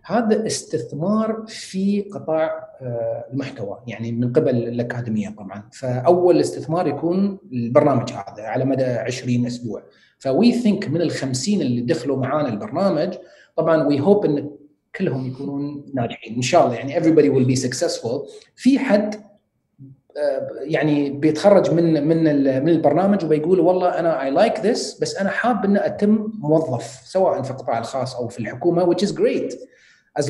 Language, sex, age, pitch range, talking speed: Arabic, male, 30-49, 130-185 Hz, 145 wpm